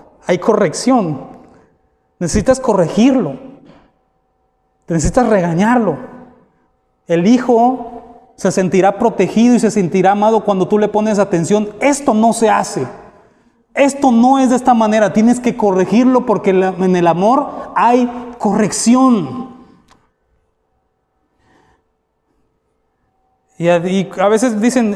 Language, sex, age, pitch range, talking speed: Spanish, male, 30-49, 210-285 Hz, 105 wpm